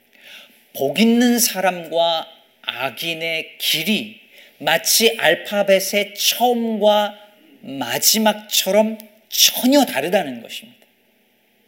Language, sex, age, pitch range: Korean, male, 40-59, 160-220 Hz